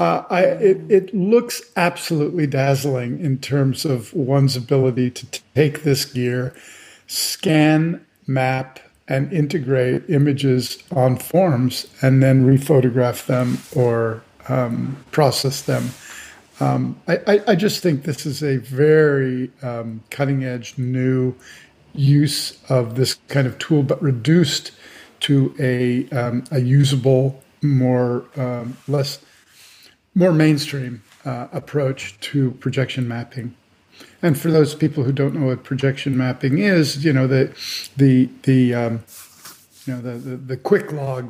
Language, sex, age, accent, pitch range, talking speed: English, male, 50-69, American, 125-150 Hz, 135 wpm